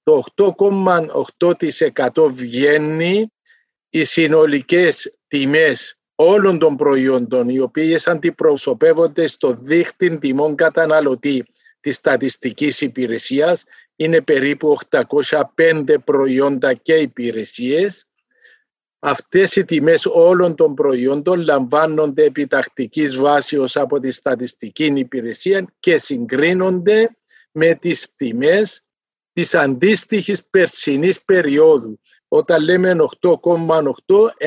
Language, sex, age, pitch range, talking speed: Greek, male, 50-69, 145-205 Hz, 85 wpm